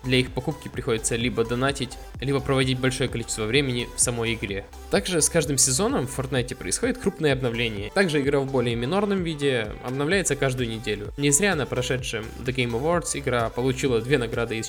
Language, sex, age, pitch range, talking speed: Russian, male, 20-39, 115-145 Hz, 180 wpm